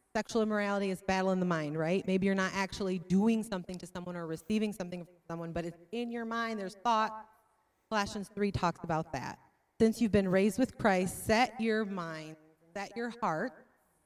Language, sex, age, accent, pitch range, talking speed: English, female, 30-49, American, 175-220 Hz, 190 wpm